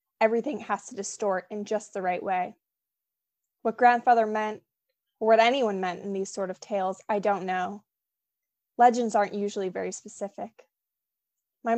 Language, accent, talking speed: English, American, 155 wpm